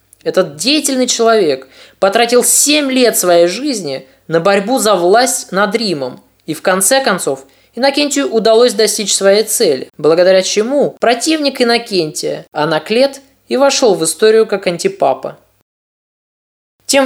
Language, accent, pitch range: Russian, native, 175-245 Hz